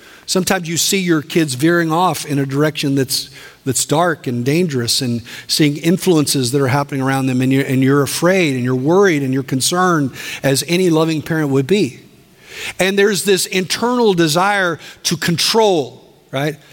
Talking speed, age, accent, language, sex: 170 wpm, 50-69, American, English, male